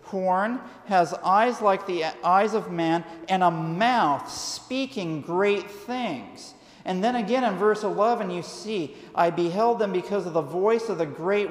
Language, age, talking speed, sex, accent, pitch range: English, 40-59, 165 wpm, male, American, 170-220 Hz